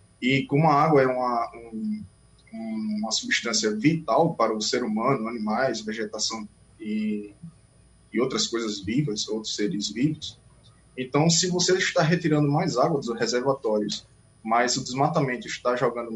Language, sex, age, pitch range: Portuguese, male, 20-39, 115-160 Hz